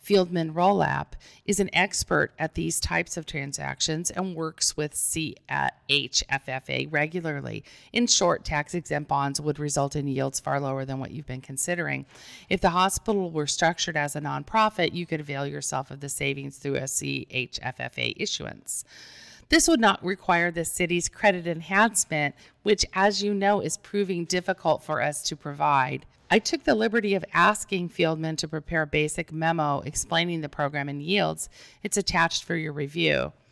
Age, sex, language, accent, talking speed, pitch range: 40-59, female, English, American, 165 wpm, 145-190 Hz